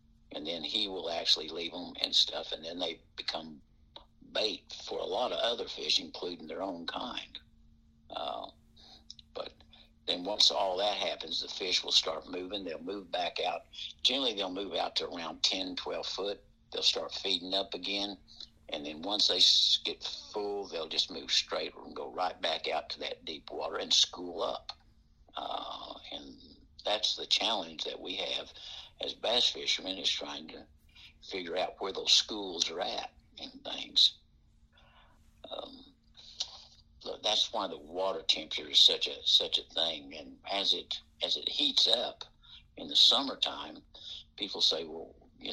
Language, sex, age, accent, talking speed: English, male, 60-79, American, 165 wpm